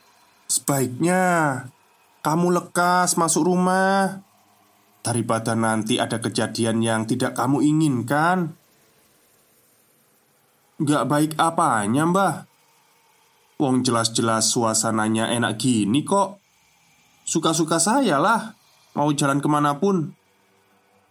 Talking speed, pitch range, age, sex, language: 80 wpm, 115-165 Hz, 20-39, male, Indonesian